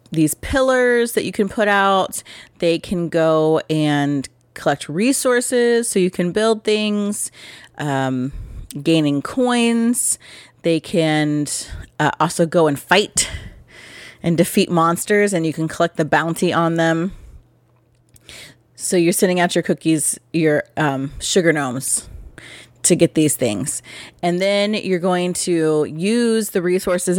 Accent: American